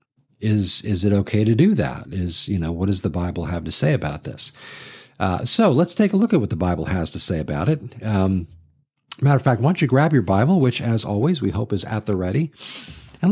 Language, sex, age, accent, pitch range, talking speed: English, male, 50-69, American, 95-140 Hz, 245 wpm